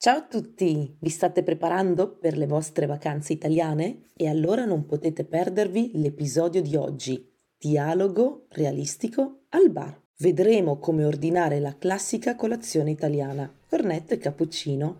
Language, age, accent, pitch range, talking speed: English, 30-49, Italian, 145-190 Hz, 130 wpm